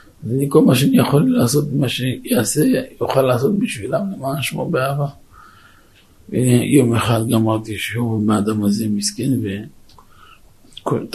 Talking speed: 125 wpm